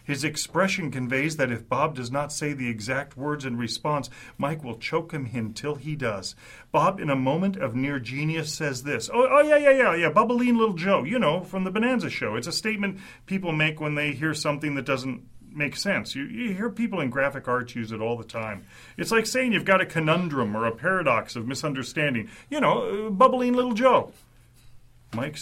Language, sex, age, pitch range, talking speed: English, male, 40-59, 120-195 Hz, 210 wpm